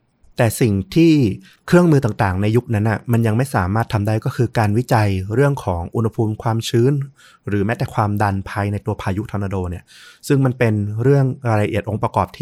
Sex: male